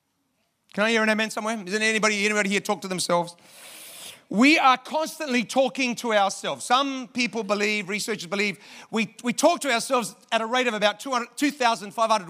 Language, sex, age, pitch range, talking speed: English, male, 40-59, 190-250 Hz, 170 wpm